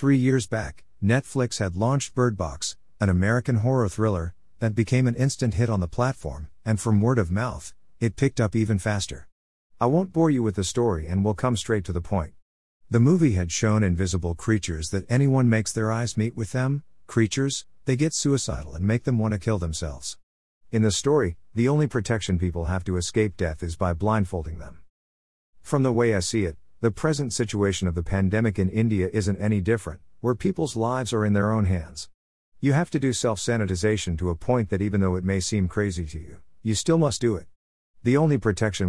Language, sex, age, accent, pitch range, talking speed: Hindi, male, 50-69, American, 90-120 Hz, 210 wpm